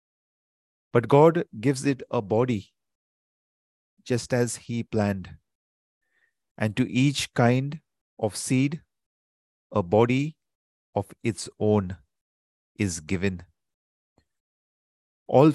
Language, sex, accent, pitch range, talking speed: English, male, Indian, 95-125 Hz, 95 wpm